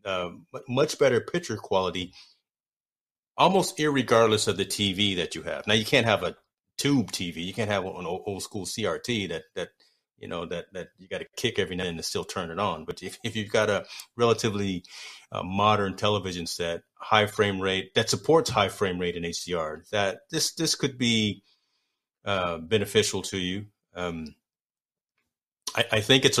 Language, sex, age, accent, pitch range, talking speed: English, male, 30-49, American, 95-115 Hz, 180 wpm